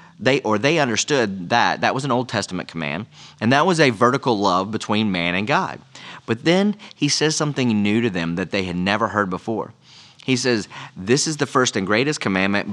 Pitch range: 100-130 Hz